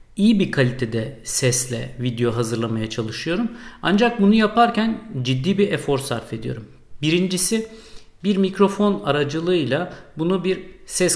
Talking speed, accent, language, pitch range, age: 120 wpm, native, Turkish, 135-205 Hz, 50-69